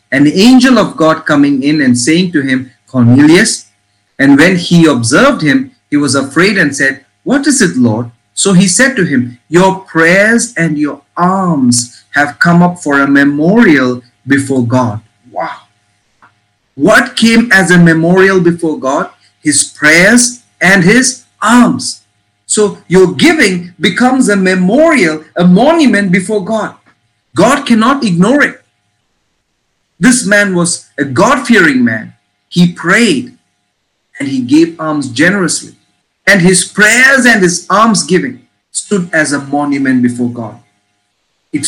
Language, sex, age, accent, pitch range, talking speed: English, male, 50-69, Indian, 120-195 Hz, 140 wpm